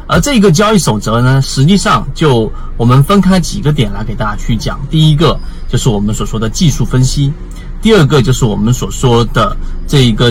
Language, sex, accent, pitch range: Chinese, male, native, 120-175 Hz